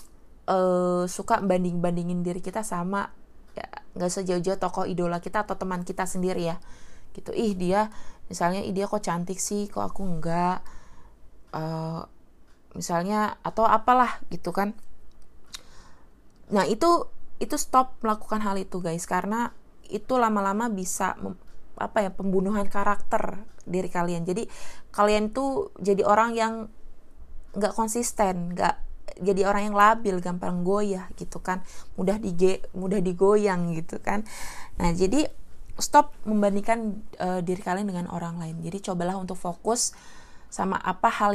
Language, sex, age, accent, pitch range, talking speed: Indonesian, female, 20-39, native, 180-220 Hz, 135 wpm